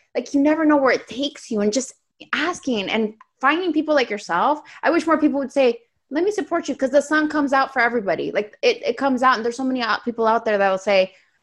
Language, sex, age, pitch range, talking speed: English, female, 20-39, 195-260 Hz, 250 wpm